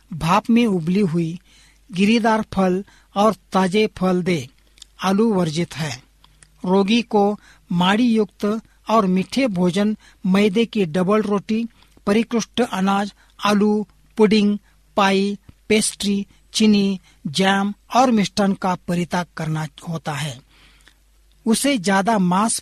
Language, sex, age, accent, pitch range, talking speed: Hindi, male, 60-79, native, 185-220 Hz, 110 wpm